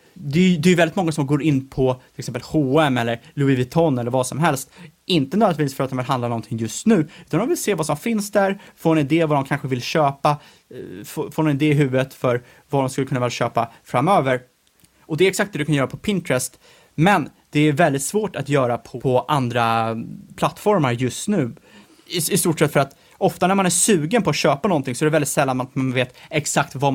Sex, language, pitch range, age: male, Swedish, 125-165 Hz, 30-49